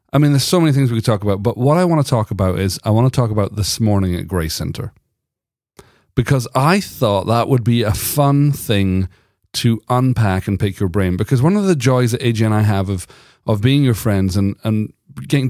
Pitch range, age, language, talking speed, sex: 100-135 Hz, 40-59, English, 240 wpm, male